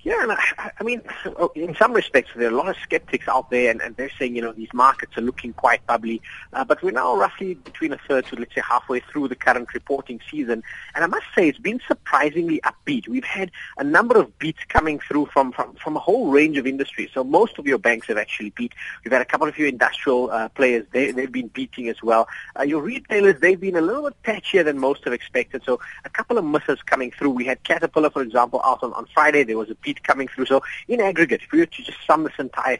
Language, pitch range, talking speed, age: English, 125-185 Hz, 250 wpm, 30-49